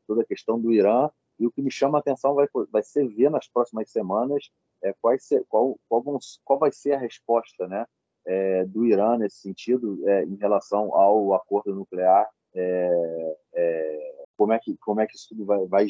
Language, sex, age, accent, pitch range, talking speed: Portuguese, male, 30-49, Brazilian, 95-130 Hz, 195 wpm